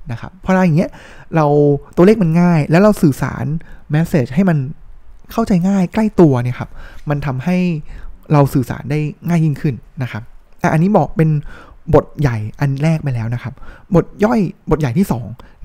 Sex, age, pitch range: male, 20-39, 135-180 Hz